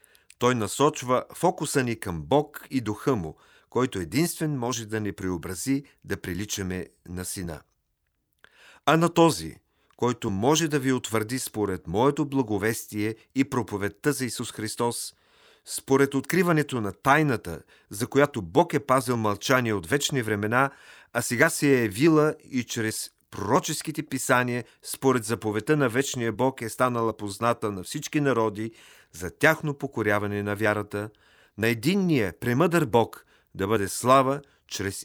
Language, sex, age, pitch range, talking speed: Bulgarian, male, 40-59, 105-140 Hz, 140 wpm